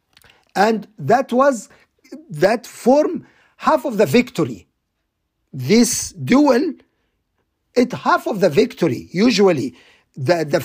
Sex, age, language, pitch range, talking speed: male, 50-69, English, 175-225 Hz, 105 wpm